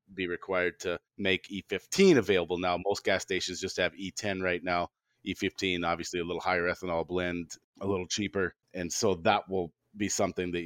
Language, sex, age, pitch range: English, male, 30-49, 90-115 Hz